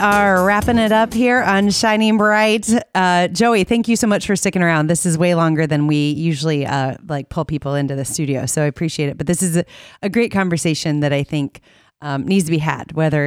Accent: American